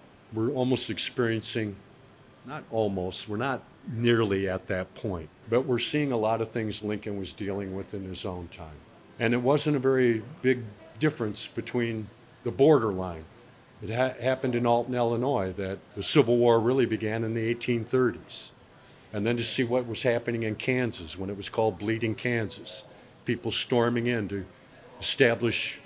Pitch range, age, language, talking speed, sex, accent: 110-130 Hz, 50-69, English, 160 wpm, male, American